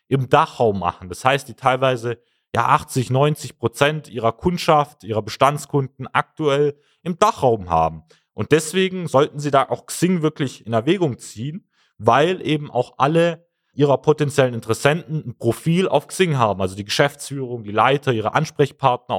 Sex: male